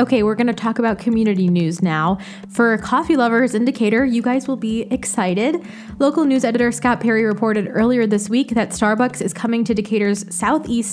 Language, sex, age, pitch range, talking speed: English, female, 20-39, 190-235 Hz, 190 wpm